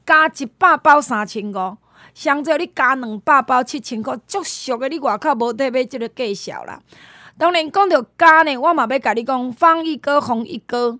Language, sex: Chinese, female